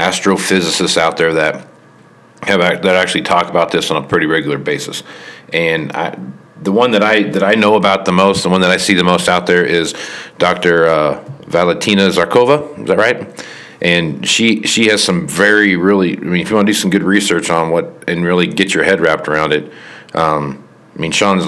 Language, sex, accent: English, male, American